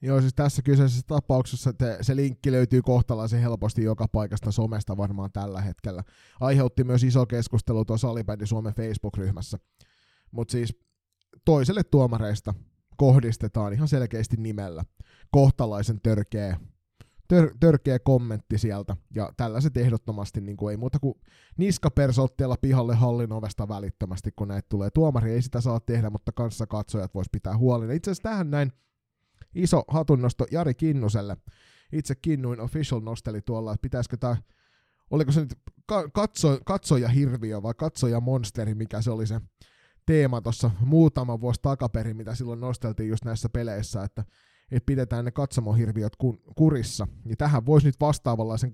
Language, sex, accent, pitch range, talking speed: Finnish, male, native, 110-135 Hz, 140 wpm